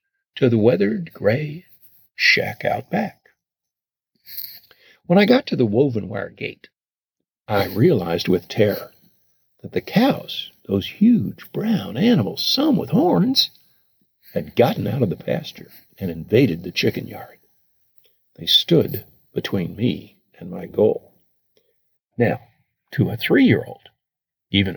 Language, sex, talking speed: English, male, 125 wpm